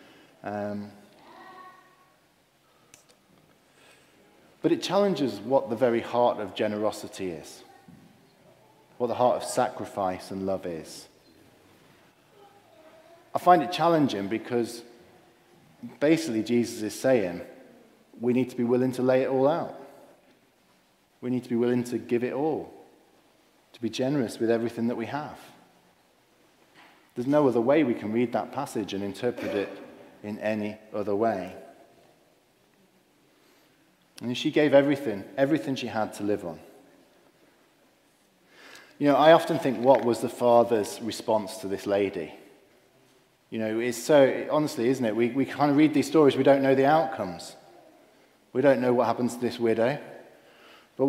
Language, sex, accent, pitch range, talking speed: English, male, British, 110-145 Hz, 145 wpm